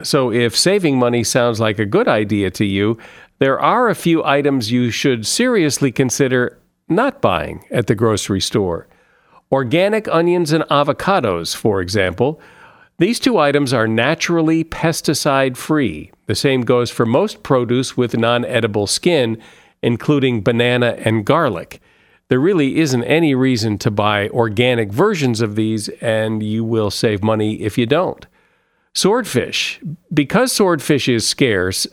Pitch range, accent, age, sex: 115-150 Hz, American, 50-69, male